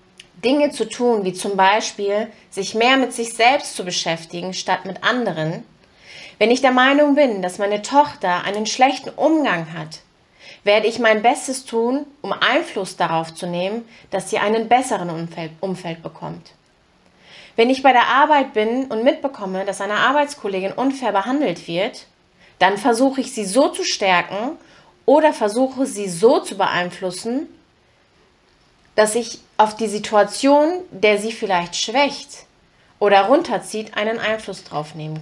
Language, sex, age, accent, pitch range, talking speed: German, female, 30-49, German, 185-255 Hz, 150 wpm